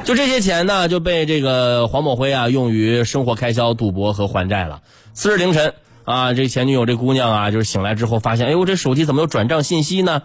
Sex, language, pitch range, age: male, Chinese, 110-165 Hz, 20-39